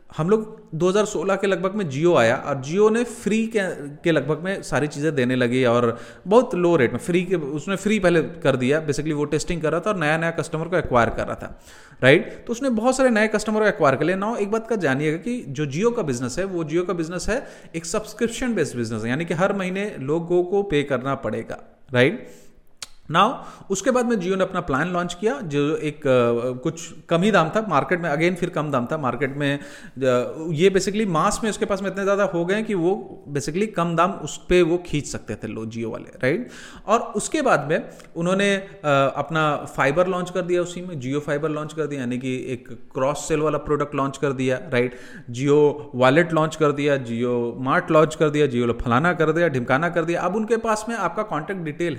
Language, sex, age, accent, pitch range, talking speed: Hindi, male, 30-49, native, 140-190 Hz, 225 wpm